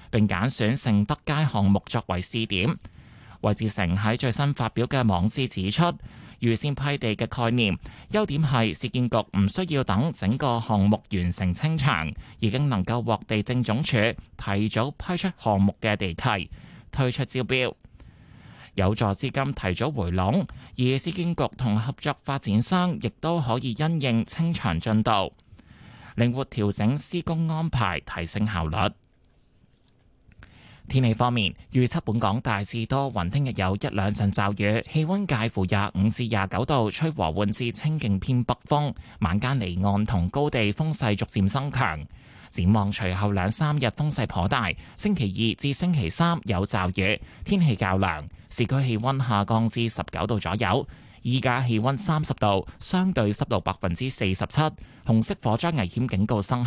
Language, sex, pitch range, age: Chinese, male, 100-135 Hz, 20-39